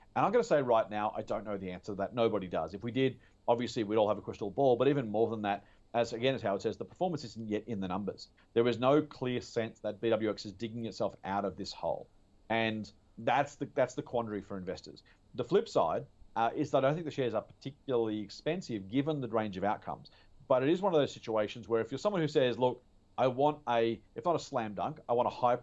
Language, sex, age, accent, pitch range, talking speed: English, male, 40-59, Australian, 105-130 Hz, 260 wpm